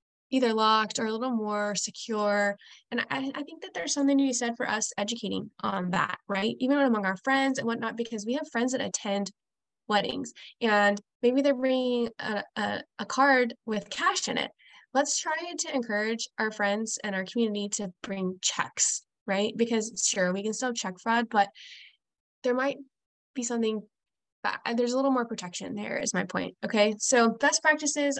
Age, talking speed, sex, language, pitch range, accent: 10-29, 185 wpm, female, English, 205-255 Hz, American